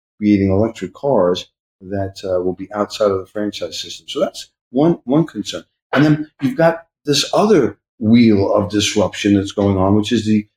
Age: 50-69